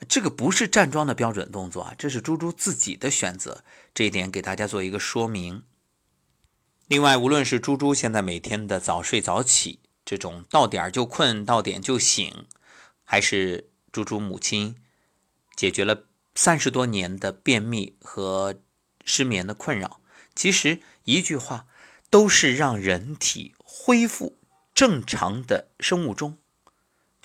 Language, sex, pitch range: Chinese, male, 100-160 Hz